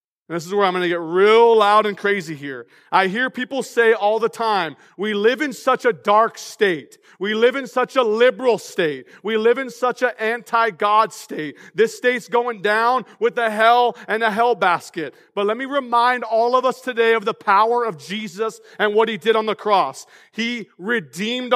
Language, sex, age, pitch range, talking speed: English, male, 40-59, 225-295 Hz, 200 wpm